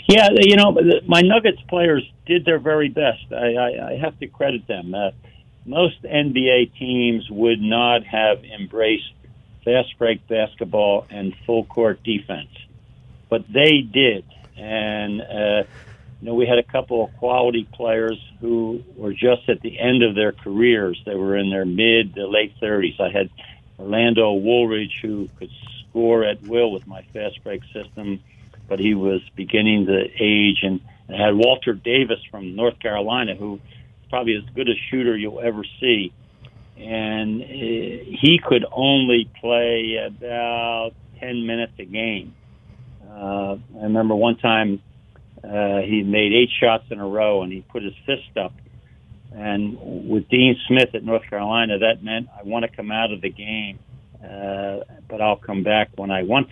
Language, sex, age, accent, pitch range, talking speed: English, male, 60-79, American, 105-120 Hz, 160 wpm